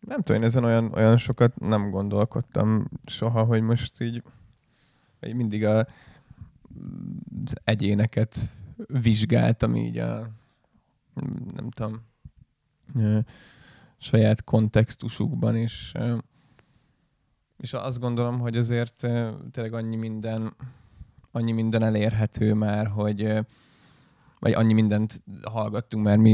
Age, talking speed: 20-39, 90 wpm